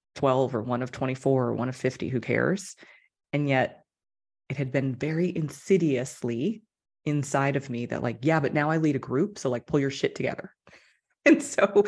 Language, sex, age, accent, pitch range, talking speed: English, female, 30-49, American, 130-185 Hz, 190 wpm